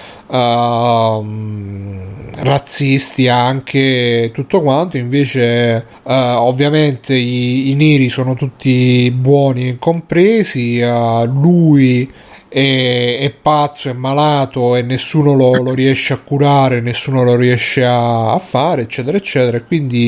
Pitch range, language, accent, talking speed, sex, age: 120-145 Hz, Italian, native, 115 wpm, male, 30-49